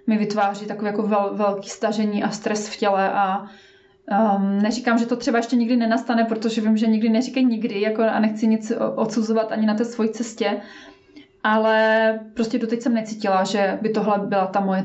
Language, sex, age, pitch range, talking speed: Czech, female, 20-39, 210-235 Hz, 190 wpm